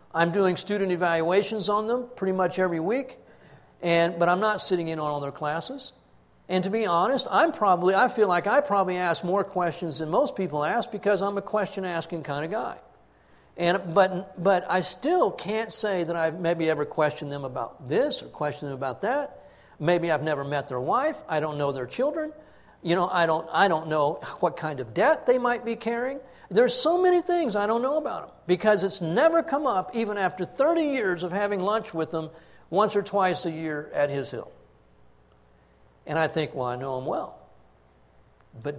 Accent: American